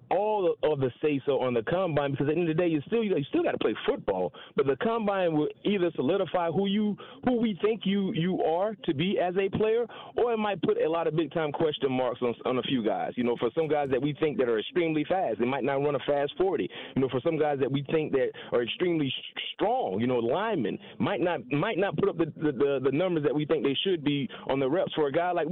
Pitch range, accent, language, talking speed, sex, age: 150-225 Hz, American, English, 275 wpm, male, 30-49